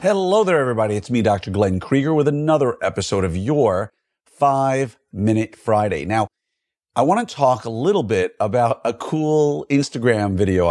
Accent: American